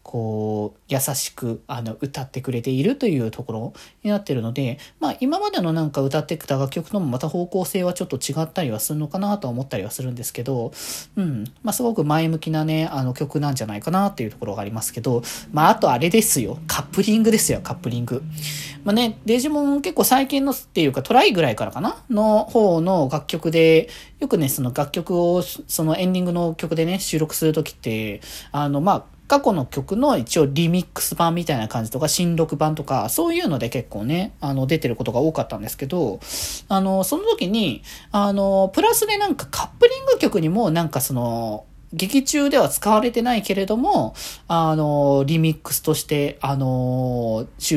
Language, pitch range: Japanese, 135-210 Hz